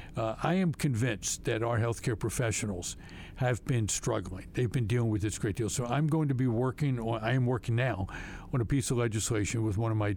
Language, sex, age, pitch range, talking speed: English, male, 60-79, 105-130 Hz, 230 wpm